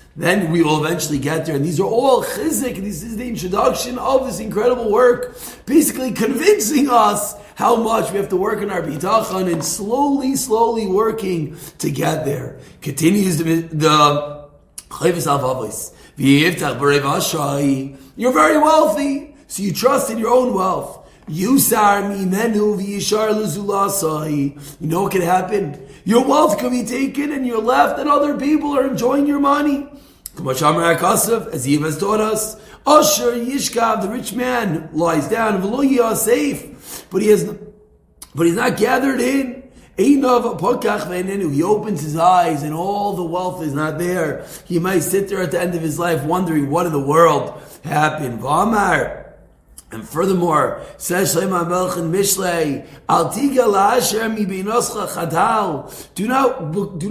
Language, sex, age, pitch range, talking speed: English, male, 30-49, 170-245 Hz, 130 wpm